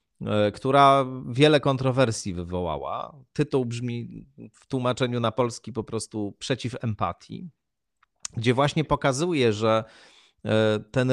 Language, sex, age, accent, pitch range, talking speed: Polish, male, 40-59, native, 110-155 Hz, 100 wpm